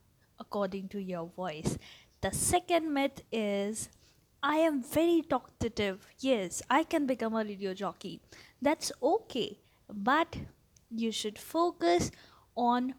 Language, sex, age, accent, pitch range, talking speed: English, female, 20-39, Indian, 210-290 Hz, 120 wpm